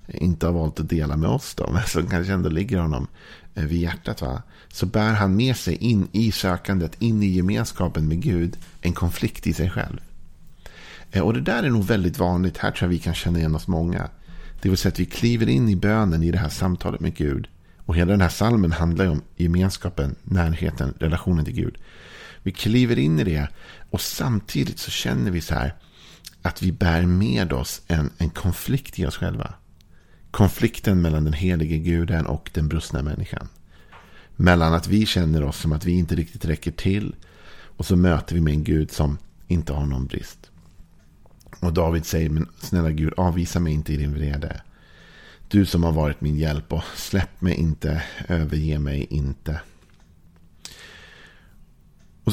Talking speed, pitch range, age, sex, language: 185 wpm, 80-95 Hz, 50-69, male, Swedish